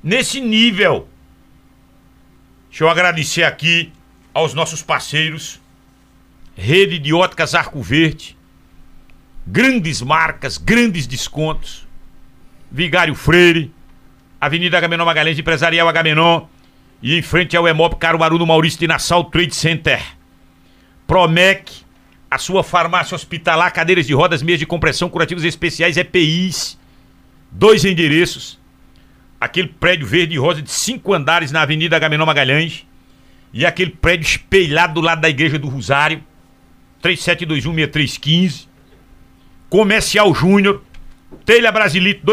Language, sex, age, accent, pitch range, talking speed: Portuguese, male, 60-79, Brazilian, 155-190 Hz, 115 wpm